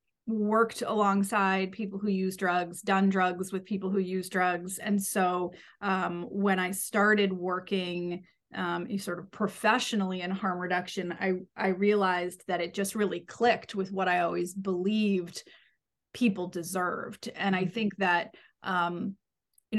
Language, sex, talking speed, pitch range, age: English, female, 145 wpm, 180-210 Hz, 30-49